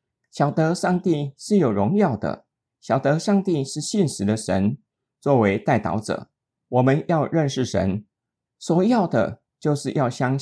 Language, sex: Chinese, male